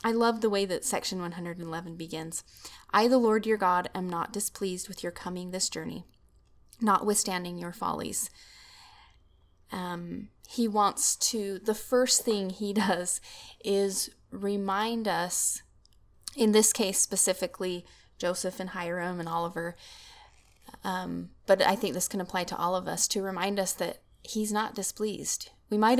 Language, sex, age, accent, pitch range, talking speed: English, female, 20-39, American, 185-230 Hz, 150 wpm